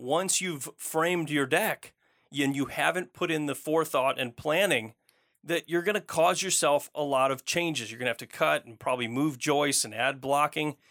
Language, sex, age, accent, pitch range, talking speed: English, male, 30-49, American, 130-165 Hz, 205 wpm